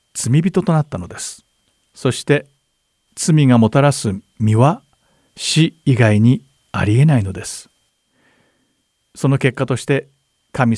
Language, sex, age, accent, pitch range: Japanese, male, 50-69, native, 115-145 Hz